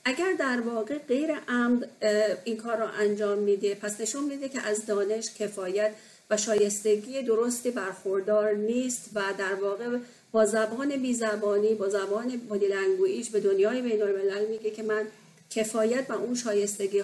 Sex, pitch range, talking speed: female, 210-240 Hz, 145 wpm